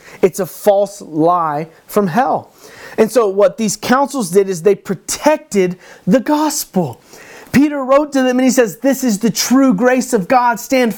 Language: English